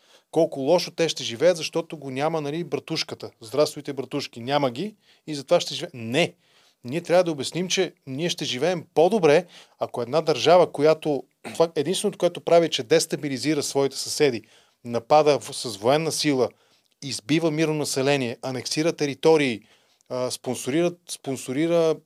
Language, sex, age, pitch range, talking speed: Bulgarian, male, 30-49, 125-160 Hz, 135 wpm